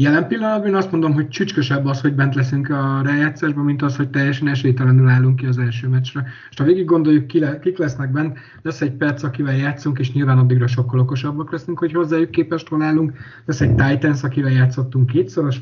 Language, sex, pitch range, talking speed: Hungarian, male, 125-150 Hz, 190 wpm